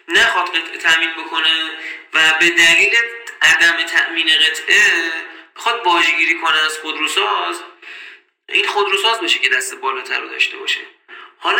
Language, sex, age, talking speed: Persian, male, 30-49, 130 wpm